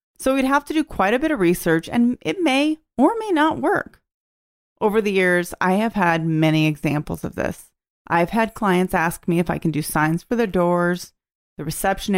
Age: 30-49